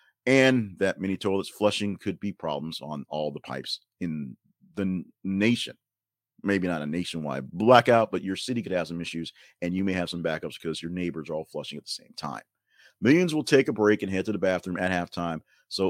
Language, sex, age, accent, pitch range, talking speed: English, male, 40-59, American, 85-110 Hz, 215 wpm